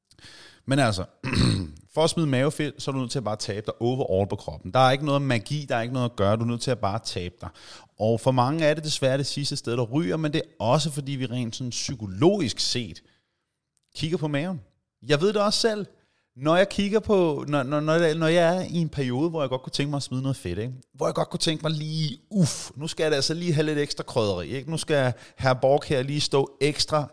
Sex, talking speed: male, 255 wpm